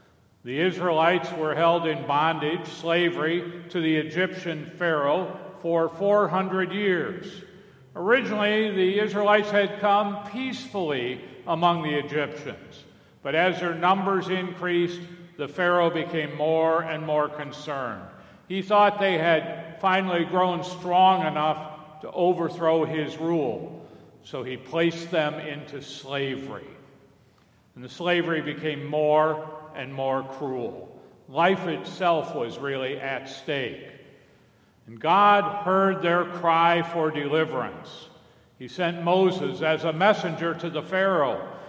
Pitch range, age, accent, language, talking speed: 150-180 Hz, 50-69, American, English, 120 wpm